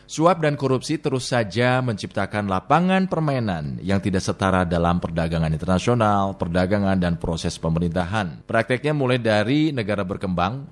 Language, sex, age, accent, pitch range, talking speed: Indonesian, male, 30-49, native, 100-135 Hz, 130 wpm